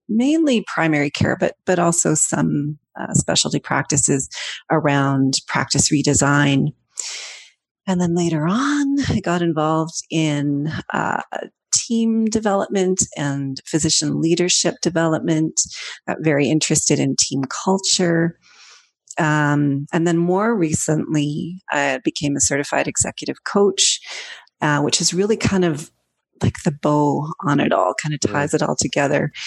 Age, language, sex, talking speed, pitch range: 40-59, English, female, 130 wpm, 145-180 Hz